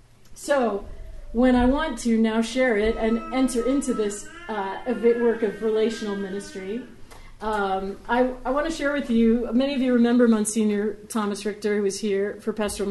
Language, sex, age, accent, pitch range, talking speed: English, female, 40-59, American, 195-245 Hz, 175 wpm